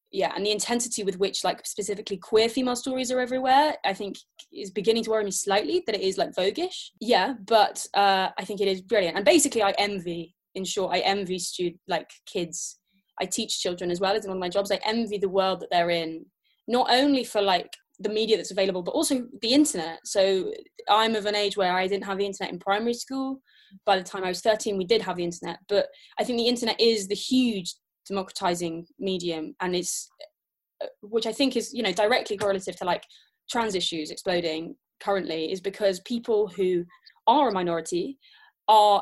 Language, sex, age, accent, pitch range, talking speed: English, female, 20-39, British, 180-225 Hz, 205 wpm